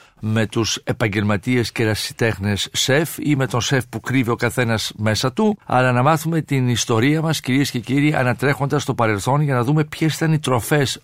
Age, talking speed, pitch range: 50-69, 190 wpm, 120-155 Hz